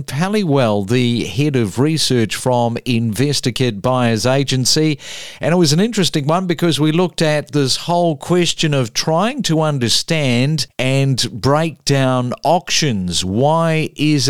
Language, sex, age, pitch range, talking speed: English, male, 50-69, 125-160 Hz, 135 wpm